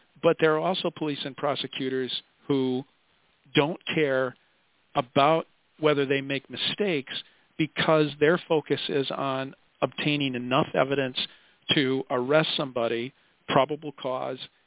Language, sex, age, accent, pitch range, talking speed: English, male, 50-69, American, 130-155 Hz, 115 wpm